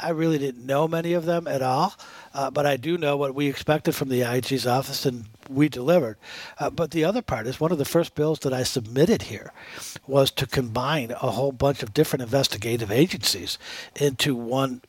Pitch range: 130-150 Hz